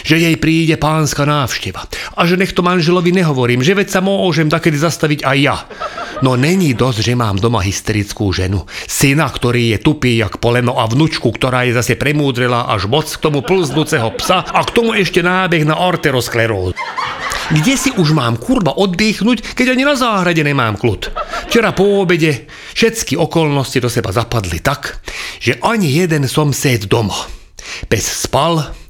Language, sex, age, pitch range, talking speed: Slovak, male, 40-59, 120-185 Hz, 170 wpm